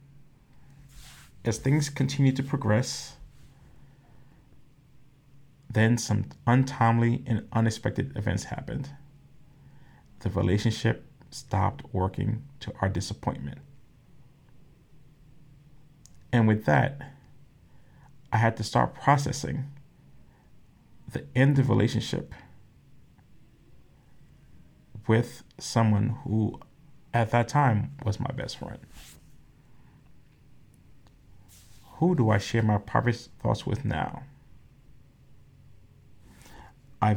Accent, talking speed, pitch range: American, 85 wpm, 110-140 Hz